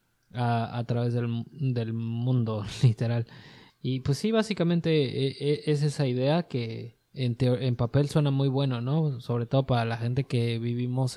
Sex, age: male, 20-39